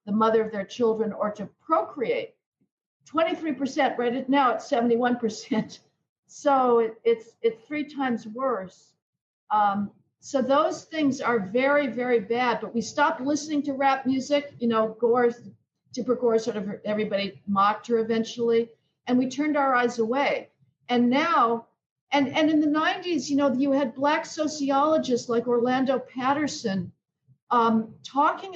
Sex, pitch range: female, 220-280 Hz